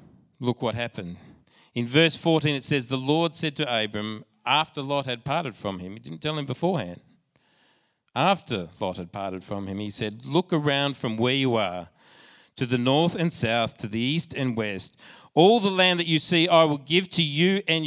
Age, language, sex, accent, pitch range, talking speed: 40-59, English, male, Australian, 105-155 Hz, 200 wpm